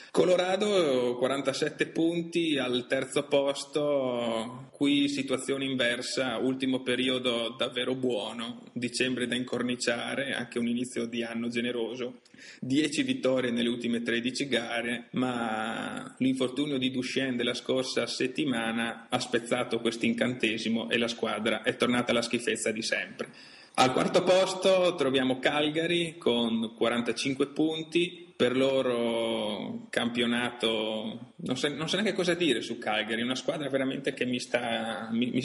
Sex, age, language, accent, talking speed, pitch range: male, 30-49, Italian, native, 130 wpm, 120-140 Hz